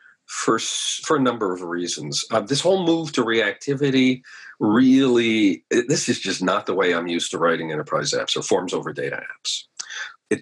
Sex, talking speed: male, 185 wpm